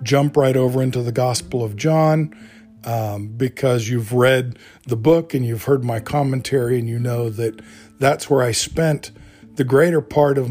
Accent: American